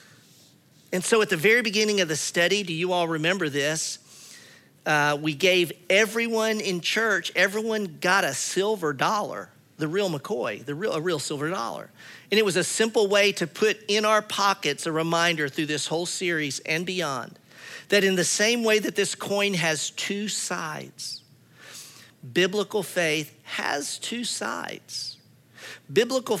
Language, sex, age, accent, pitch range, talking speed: English, male, 50-69, American, 155-205 Hz, 160 wpm